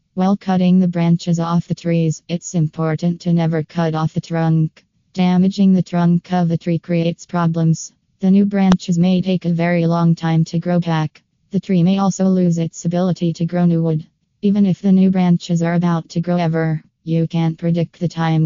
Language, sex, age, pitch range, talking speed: English, female, 20-39, 165-180 Hz, 200 wpm